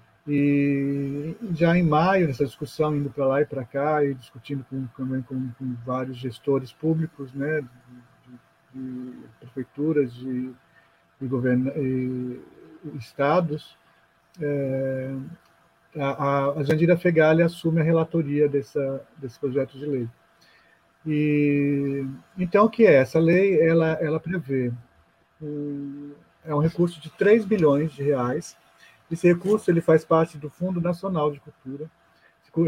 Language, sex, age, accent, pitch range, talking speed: Portuguese, male, 40-59, Brazilian, 135-165 Hz, 140 wpm